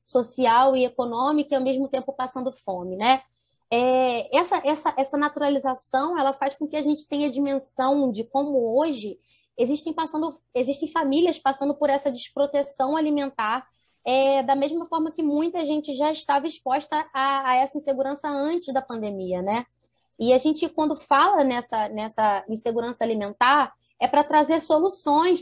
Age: 20-39